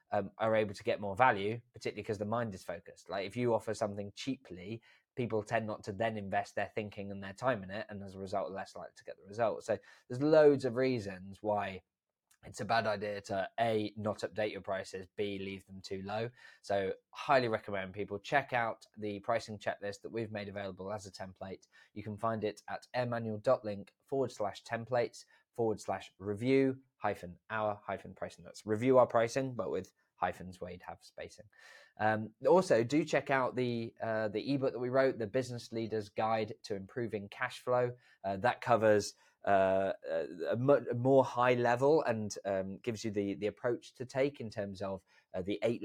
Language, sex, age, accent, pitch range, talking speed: English, male, 20-39, British, 100-125 Hz, 195 wpm